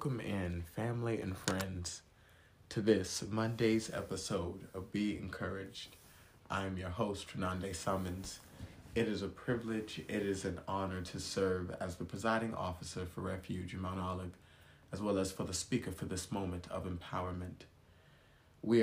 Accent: American